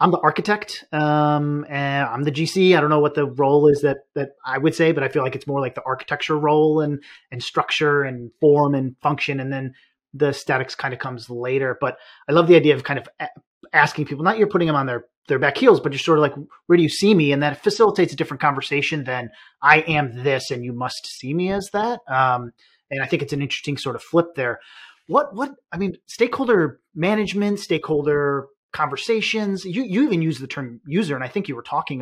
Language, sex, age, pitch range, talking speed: English, male, 30-49, 135-170 Hz, 230 wpm